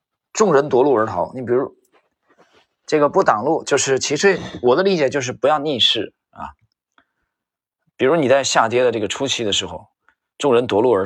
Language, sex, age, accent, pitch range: Chinese, male, 20-39, native, 105-145 Hz